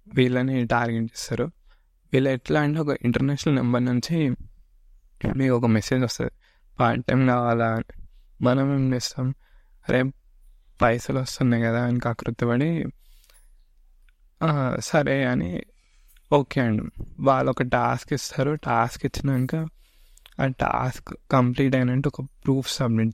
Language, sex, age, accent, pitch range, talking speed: Telugu, male, 20-39, native, 115-135 Hz, 115 wpm